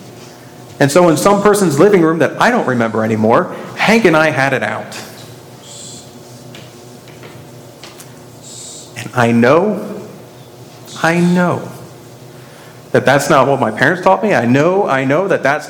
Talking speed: 140 wpm